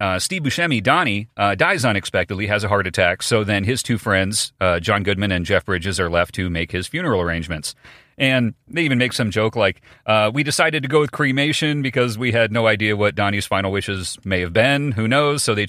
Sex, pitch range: male, 95-125 Hz